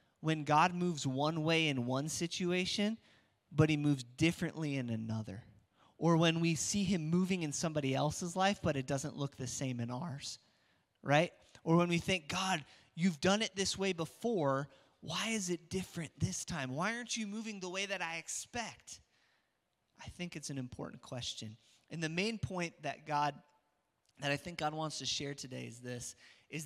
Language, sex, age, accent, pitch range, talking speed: English, male, 30-49, American, 135-180 Hz, 185 wpm